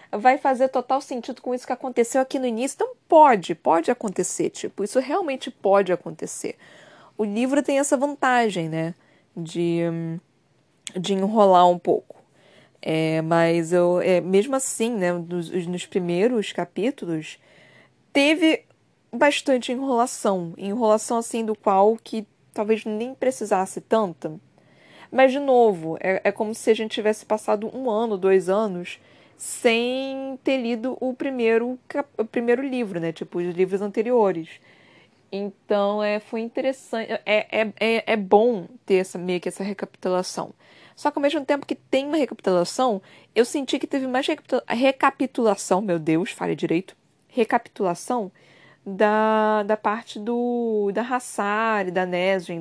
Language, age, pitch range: Portuguese, 20-39, 190-255 Hz